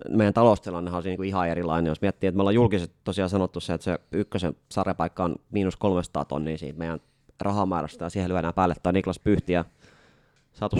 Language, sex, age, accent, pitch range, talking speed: Finnish, male, 20-39, native, 85-100 Hz, 185 wpm